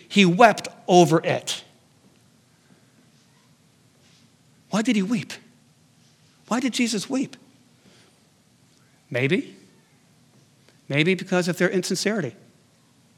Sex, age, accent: male, 60-79, American